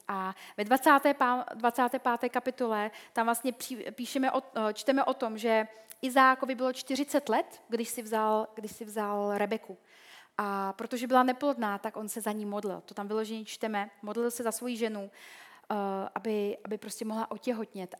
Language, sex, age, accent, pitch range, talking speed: Czech, female, 30-49, native, 205-250 Hz, 155 wpm